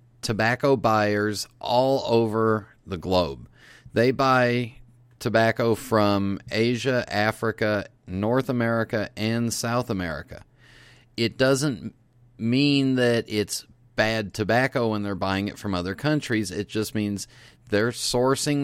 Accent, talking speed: American, 115 wpm